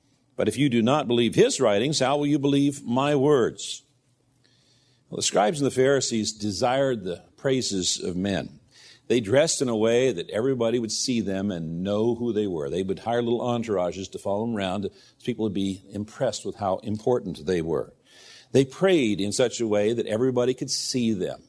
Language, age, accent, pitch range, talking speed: English, 50-69, American, 110-135 Hz, 195 wpm